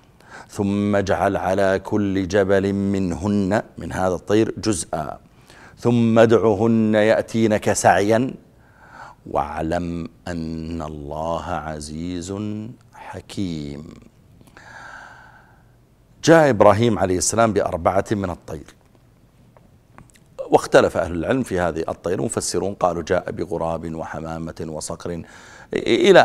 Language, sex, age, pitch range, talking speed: Arabic, male, 50-69, 90-120 Hz, 90 wpm